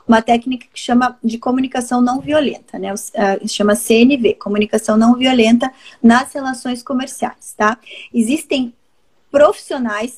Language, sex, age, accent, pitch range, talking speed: Portuguese, female, 20-39, Brazilian, 215-265 Hz, 120 wpm